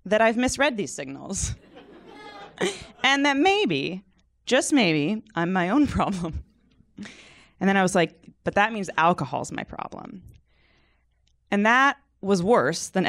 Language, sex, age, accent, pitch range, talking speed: English, female, 20-39, American, 145-195 Hz, 140 wpm